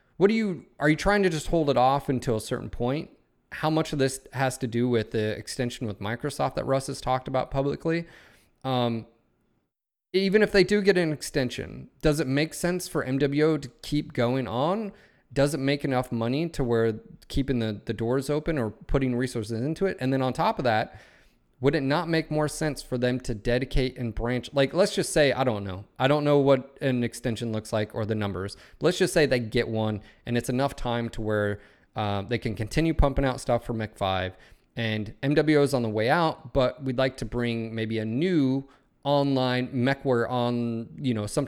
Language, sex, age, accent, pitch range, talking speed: English, male, 30-49, American, 110-145 Hz, 215 wpm